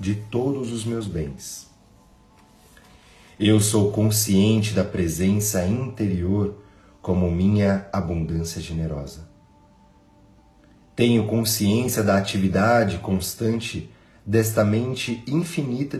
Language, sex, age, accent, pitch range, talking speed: Portuguese, male, 40-59, Brazilian, 95-110 Hz, 85 wpm